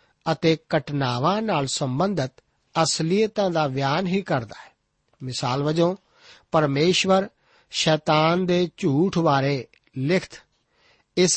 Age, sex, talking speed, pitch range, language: 60-79, male, 95 wpm, 145-190 Hz, Punjabi